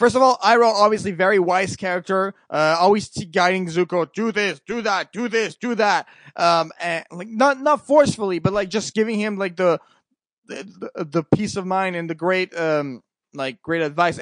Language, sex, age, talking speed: English, male, 20-39, 190 wpm